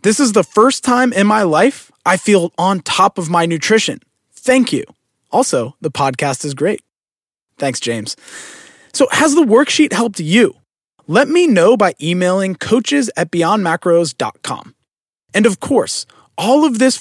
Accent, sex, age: American, male, 20-39